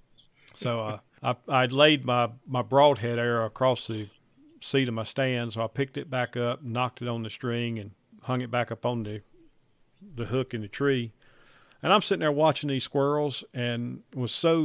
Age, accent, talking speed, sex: 50-69, American, 195 wpm, male